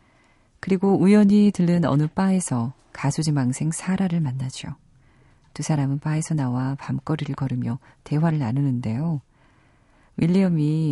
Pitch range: 130-175 Hz